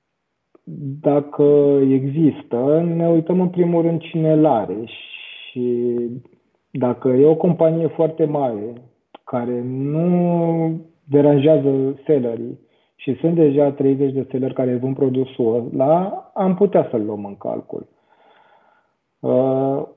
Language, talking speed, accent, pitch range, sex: Romanian, 110 wpm, native, 120-155 Hz, male